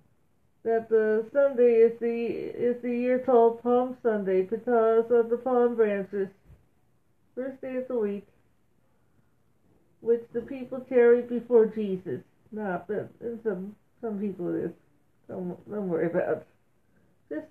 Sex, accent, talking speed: female, American, 135 wpm